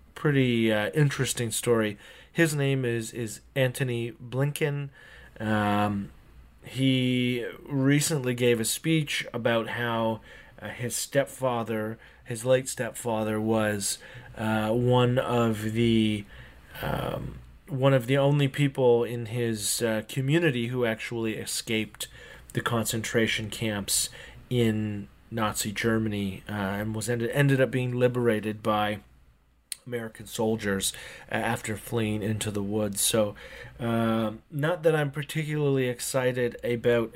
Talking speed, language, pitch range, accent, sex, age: 115 wpm, English, 105-125 Hz, American, male, 30-49